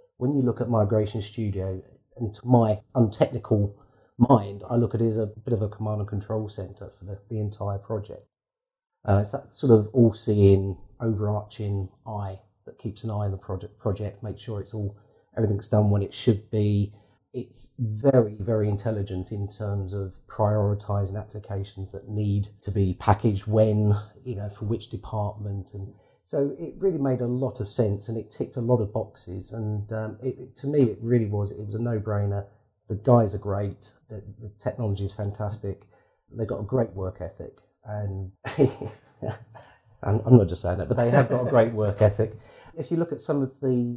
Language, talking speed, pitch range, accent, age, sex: English, 190 wpm, 100-120 Hz, British, 30-49, male